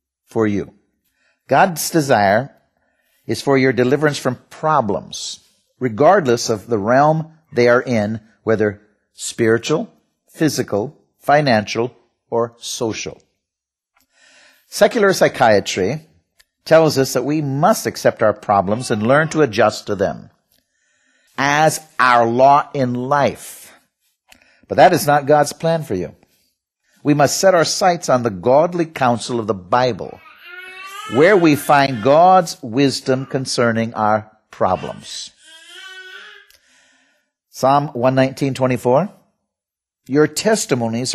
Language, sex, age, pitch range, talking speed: English, male, 50-69, 115-150 Hz, 110 wpm